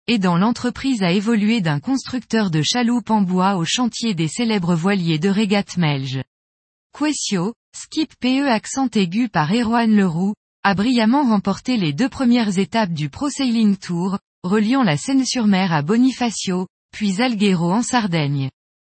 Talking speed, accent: 150 wpm, French